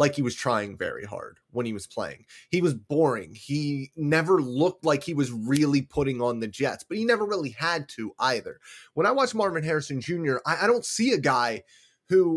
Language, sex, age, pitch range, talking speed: English, male, 30-49, 110-145 Hz, 215 wpm